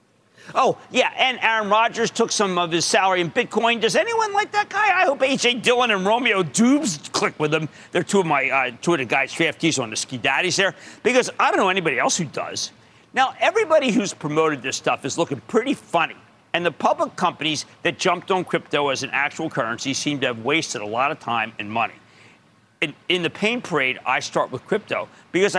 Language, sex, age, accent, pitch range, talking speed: English, male, 50-69, American, 140-230 Hz, 210 wpm